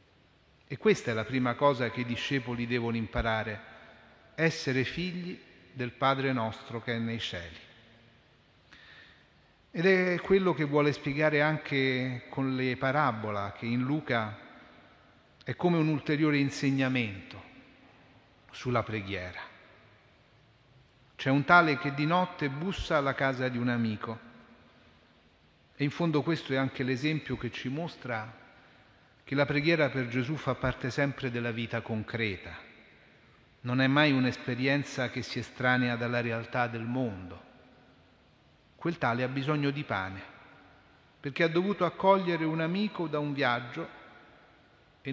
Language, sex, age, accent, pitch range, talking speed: Italian, male, 40-59, native, 115-145 Hz, 135 wpm